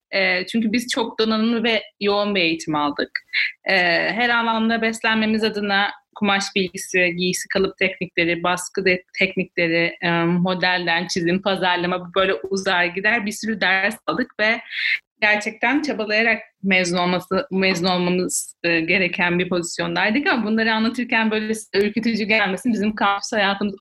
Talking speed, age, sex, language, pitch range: 125 wpm, 30-49, female, Turkish, 185-225 Hz